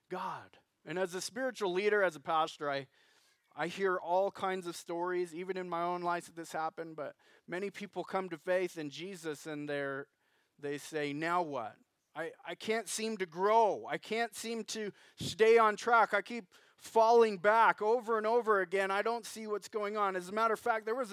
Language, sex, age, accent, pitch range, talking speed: English, male, 30-49, American, 160-205 Hz, 200 wpm